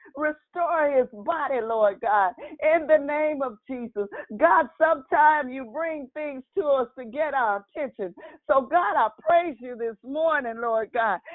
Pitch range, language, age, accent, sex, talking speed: 240-315 Hz, English, 50-69, American, female, 160 wpm